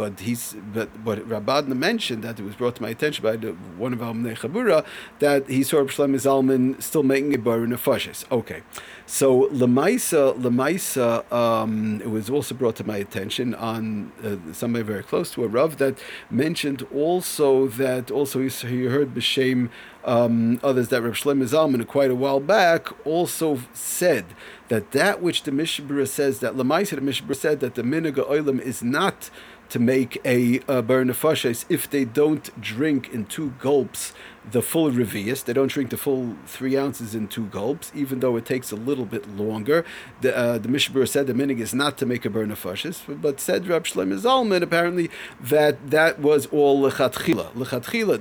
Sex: male